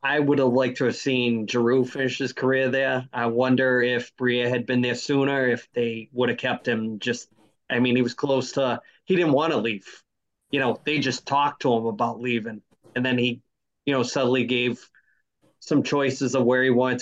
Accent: American